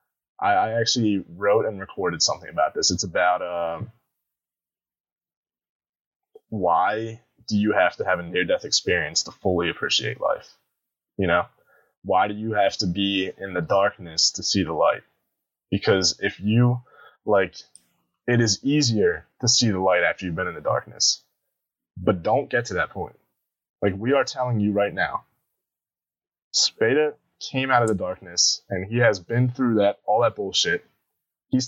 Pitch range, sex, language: 100-135 Hz, male, English